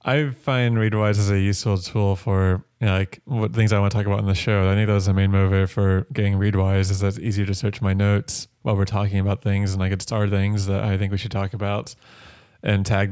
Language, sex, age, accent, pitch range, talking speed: English, male, 20-39, American, 100-115 Hz, 265 wpm